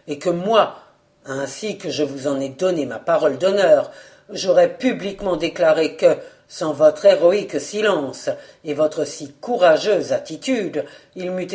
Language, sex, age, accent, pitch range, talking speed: French, female, 50-69, French, 155-215 Hz, 145 wpm